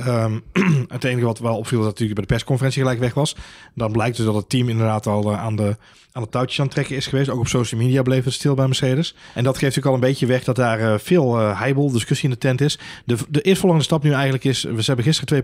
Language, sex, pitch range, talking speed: Dutch, male, 110-135 Hz, 270 wpm